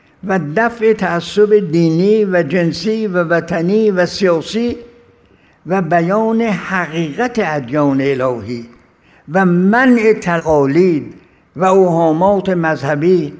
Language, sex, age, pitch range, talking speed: Persian, male, 60-79, 160-195 Hz, 95 wpm